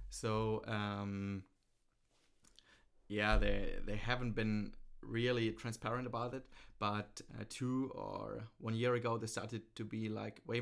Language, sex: English, male